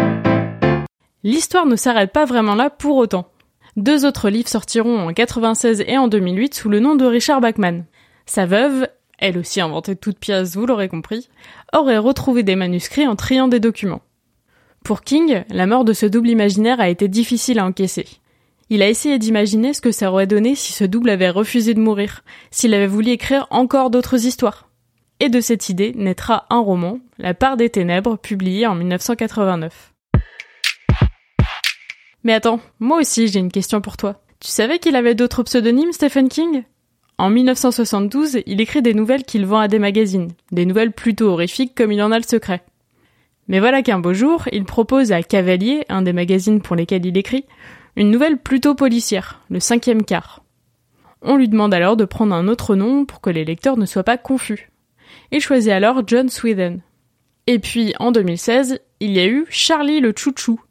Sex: female